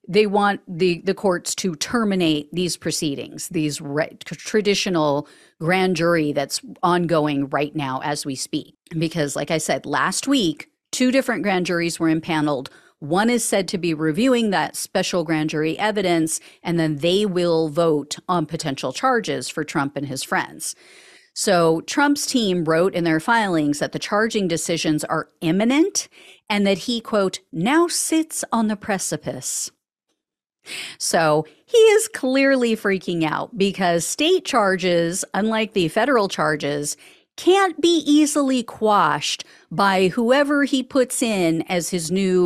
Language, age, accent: English, 40-59, American